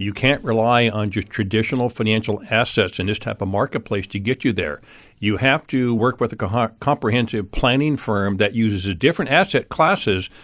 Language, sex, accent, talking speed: English, male, American, 180 wpm